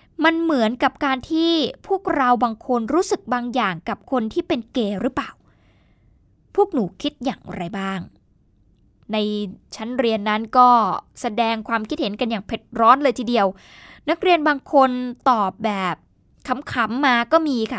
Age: 10-29